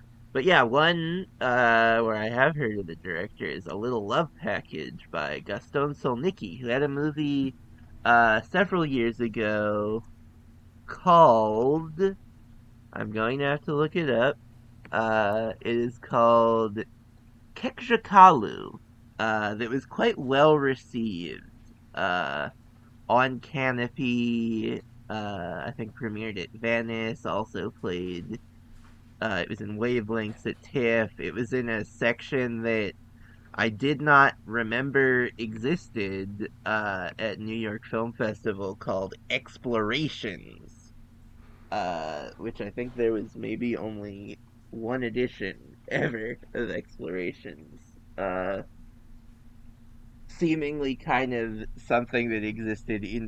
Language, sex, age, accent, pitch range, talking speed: English, male, 20-39, American, 110-125 Hz, 115 wpm